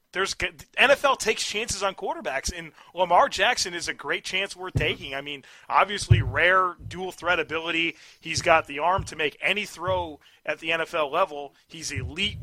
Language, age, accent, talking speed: English, 30-49, American, 175 wpm